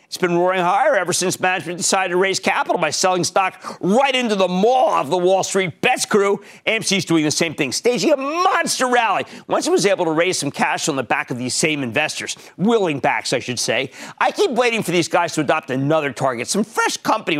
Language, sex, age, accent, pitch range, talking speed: English, male, 50-69, American, 150-205 Hz, 230 wpm